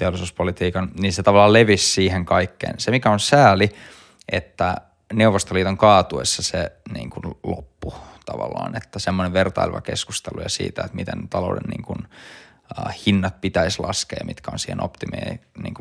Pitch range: 90-105 Hz